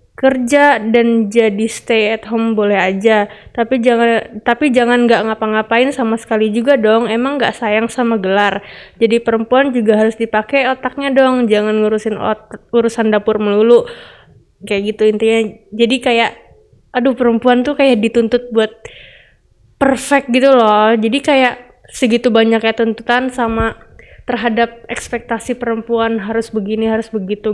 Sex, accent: female, native